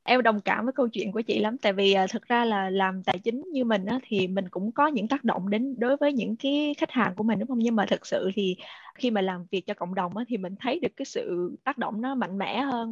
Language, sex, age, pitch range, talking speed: Vietnamese, female, 20-39, 200-265 Hz, 295 wpm